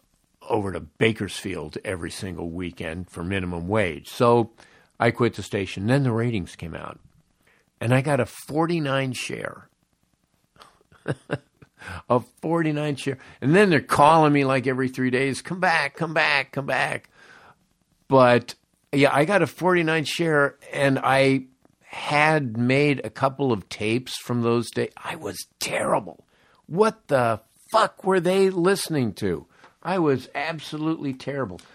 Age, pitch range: 50-69, 110-145 Hz